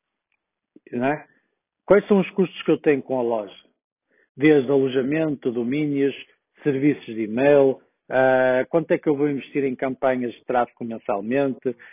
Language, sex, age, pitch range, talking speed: Portuguese, male, 50-69, 130-165 Hz, 135 wpm